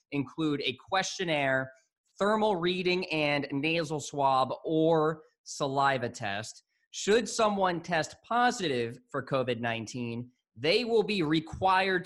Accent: American